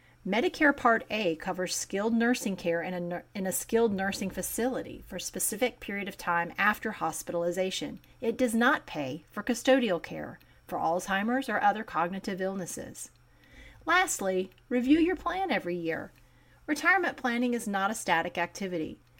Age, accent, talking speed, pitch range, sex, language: 40-59, American, 145 wpm, 180-255 Hz, female, English